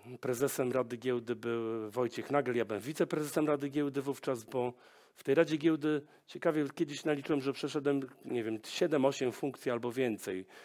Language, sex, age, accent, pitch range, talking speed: Polish, male, 40-59, native, 115-150 Hz, 160 wpm